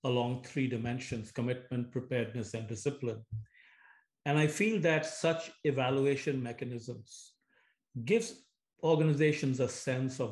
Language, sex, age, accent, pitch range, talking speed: English, male, 50-69, Indian, 125-145 Hz, 110 wpm